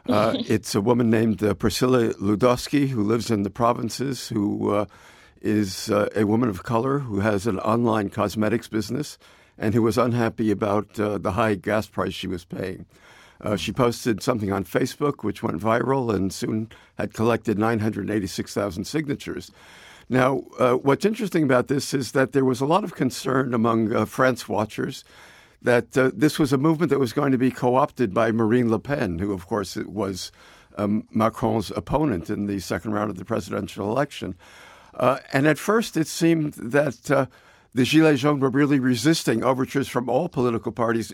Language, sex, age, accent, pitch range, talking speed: English, male, 60-79, American, 105-130 Hz, 180 wpm